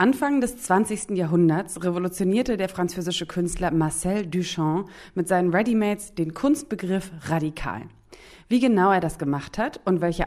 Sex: female